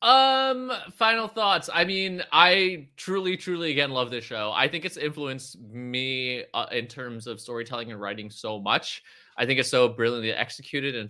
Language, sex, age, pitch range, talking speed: English, male, 20-39, 110-140 Hz, 180 wpm